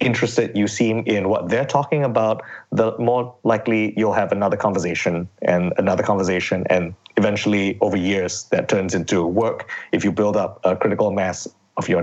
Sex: male